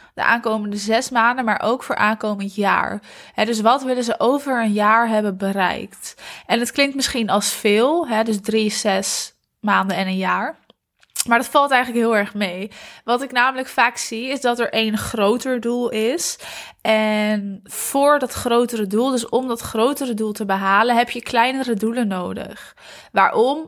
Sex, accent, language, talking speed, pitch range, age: female, Dutch, Dutch, 170 wpm, 210-245 Hz, 20-39